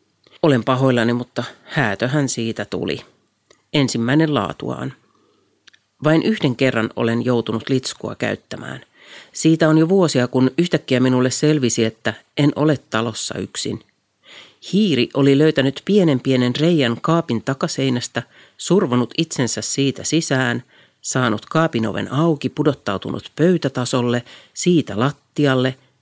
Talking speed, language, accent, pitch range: 110 wpm, Finnish, native, 120-145 Hz